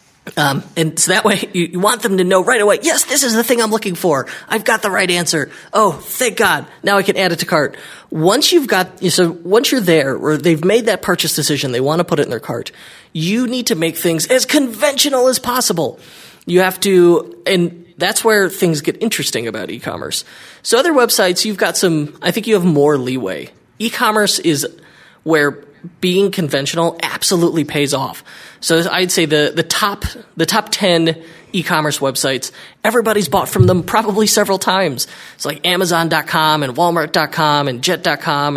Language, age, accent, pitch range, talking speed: English, 20-39, American, 160-215 Hz, 200 wpm